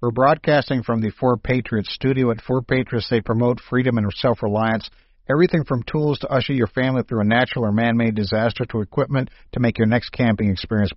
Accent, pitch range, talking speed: American, 95-130 Hz, 195 wpm